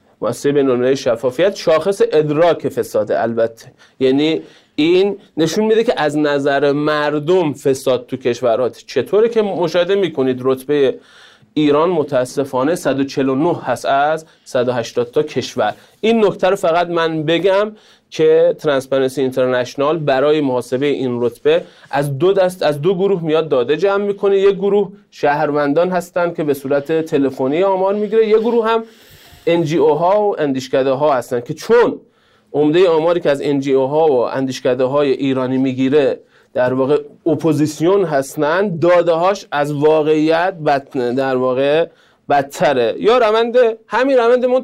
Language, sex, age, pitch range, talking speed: Persian, male, 30-49, 140-210 Hz, 135 wpm